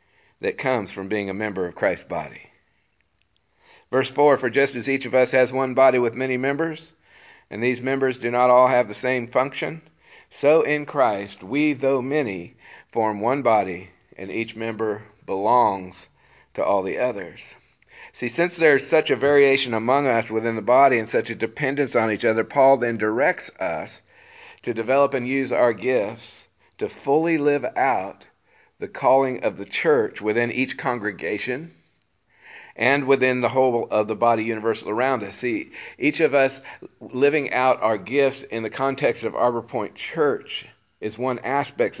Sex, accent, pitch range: male, American, 110-135 Hz